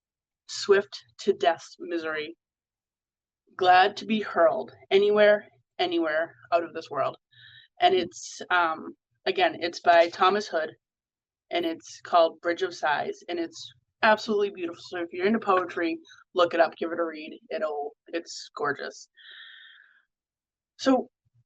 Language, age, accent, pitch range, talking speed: English, 20-39, American, 170-265 Hz, 135 wpm